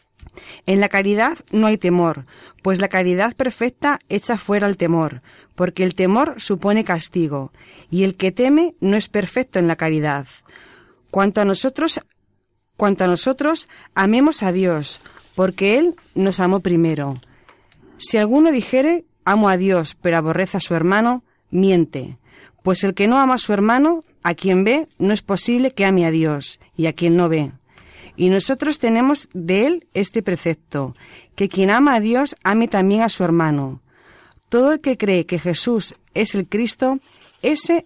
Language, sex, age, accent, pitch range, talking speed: Spanish, female, 30-49, Spanish, 170-240 Hz, 165 wpm